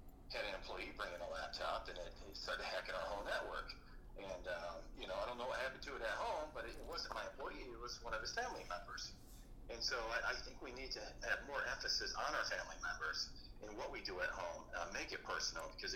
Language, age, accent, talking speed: English, 40-59, American, 235 wpm